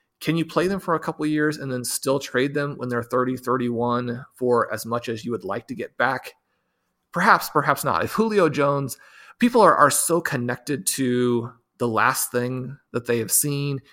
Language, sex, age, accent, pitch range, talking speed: English, male, 30-49, American, 115-140 Hz, 205 wpm